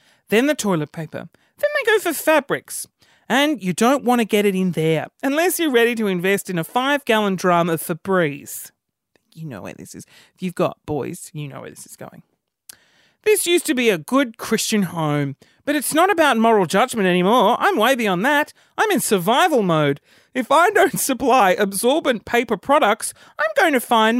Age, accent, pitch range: 30-49, Australian, 190-295 Hz